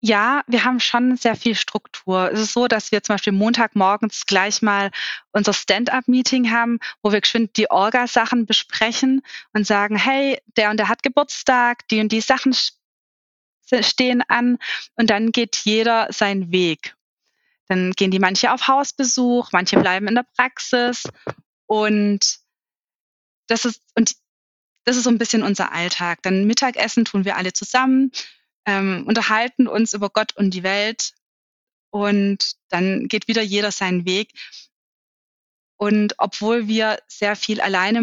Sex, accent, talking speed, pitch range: female, German, 150 wpm, 200-235 Hz